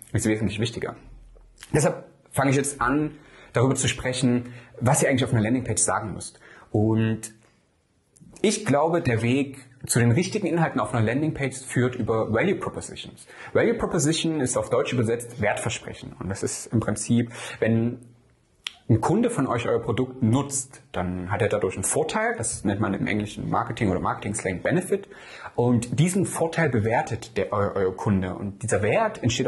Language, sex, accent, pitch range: German, male, German, 115-155 Hz